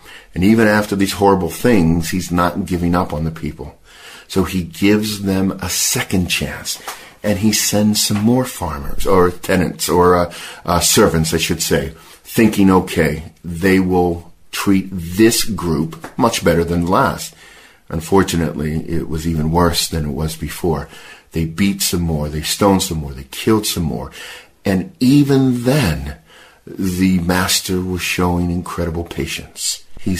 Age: 50-69